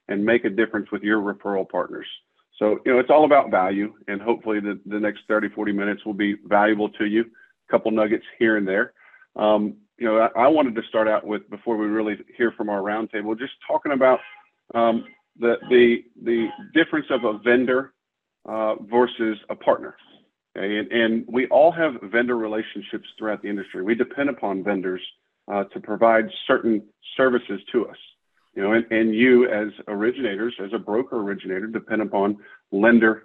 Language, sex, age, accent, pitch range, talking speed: English, male, 40-59, American, 105-120 Hz, 185 wpm